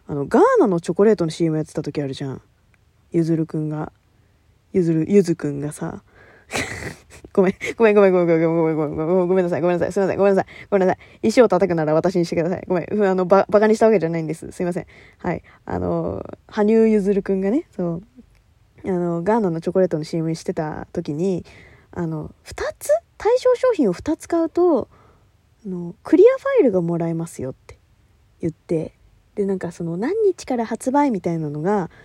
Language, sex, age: Japanese, female, 20-39